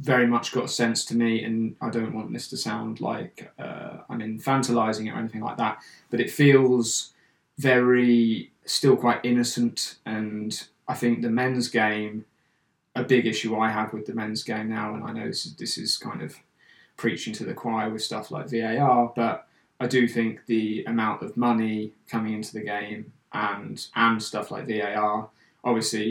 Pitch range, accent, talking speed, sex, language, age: 110-120 Hz, British, 180 wpm, male, English, 20-39